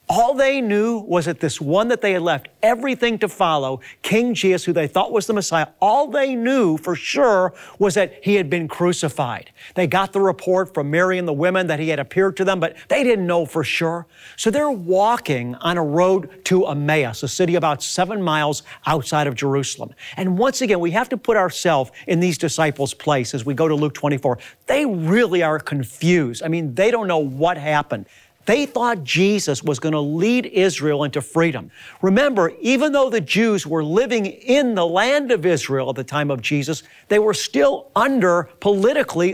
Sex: male